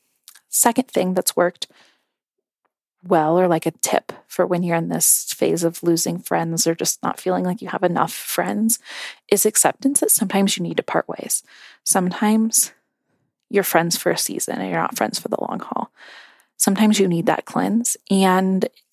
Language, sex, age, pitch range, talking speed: English, female, 20-39, 170-205 Hz, 180 wpm